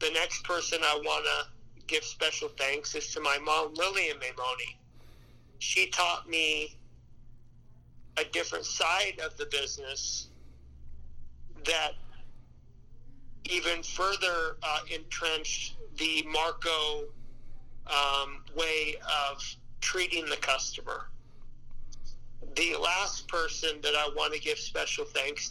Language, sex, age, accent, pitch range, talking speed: English, male, 40-59, American, 120-165 Hz, 110 wpm